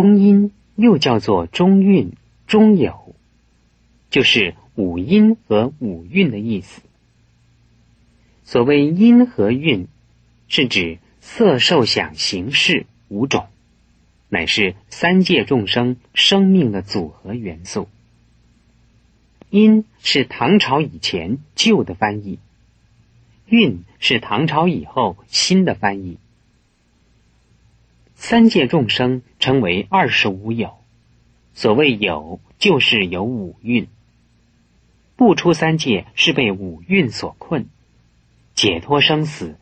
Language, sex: Chinese, male